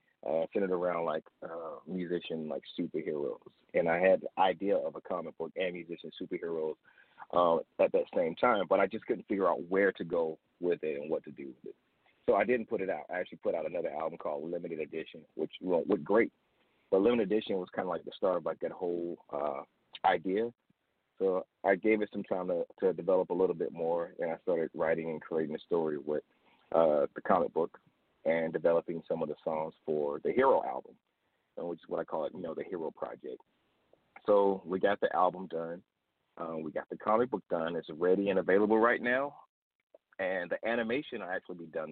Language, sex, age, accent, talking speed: English, male, 30-49, American, 210 wpm